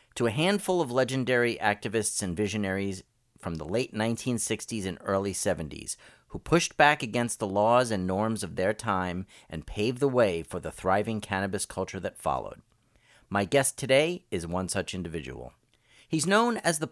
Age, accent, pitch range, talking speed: 40-59, American, 100-135 Hz, 170 wpm